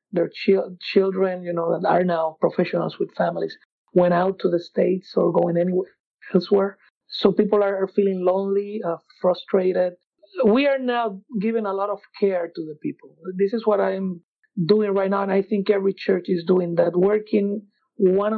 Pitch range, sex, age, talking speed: 180-205 Hz, male, 50-69, 180 wpm